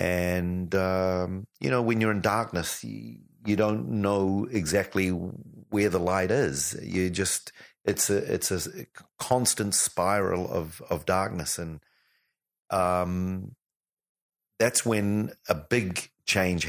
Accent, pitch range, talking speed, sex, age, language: Australian, 90-105 Hz, 125 wpm, male, 40-59, English